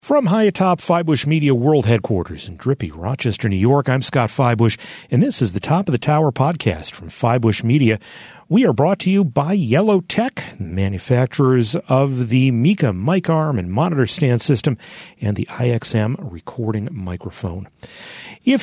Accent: American